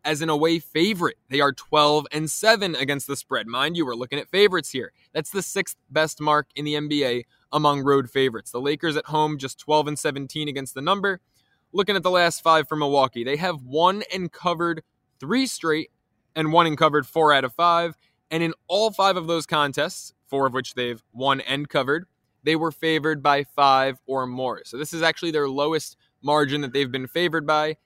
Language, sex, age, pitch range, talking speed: English, male, 20-39, 135-170 Hz, 205 wpm